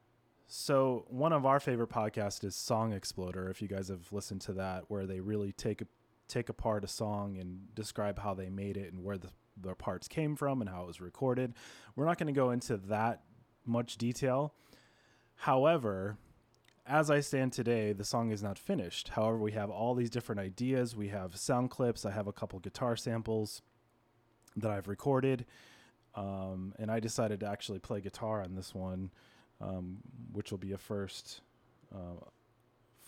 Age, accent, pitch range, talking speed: 20-39, American, 100-120 Hz, 180 wpm